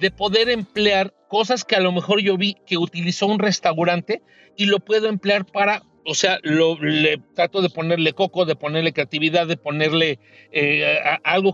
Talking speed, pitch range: 185 wpm, 175-225 Hz